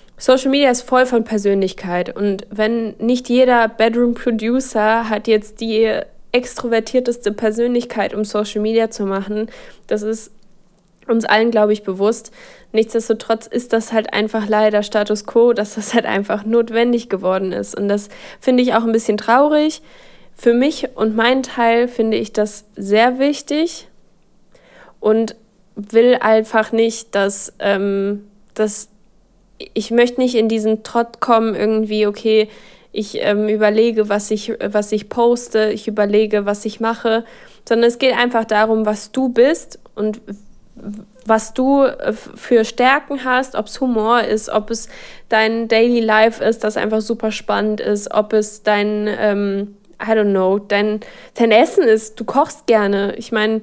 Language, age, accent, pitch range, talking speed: German, 20-39, German, 210-235 Hz, 155 wpm